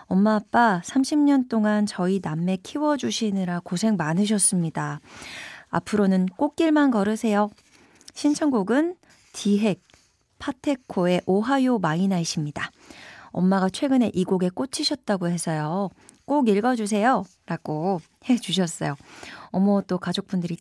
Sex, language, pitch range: female, Korean, 165-235 Hz